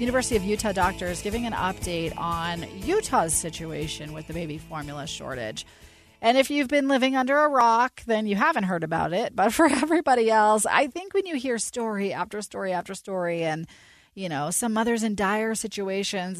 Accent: American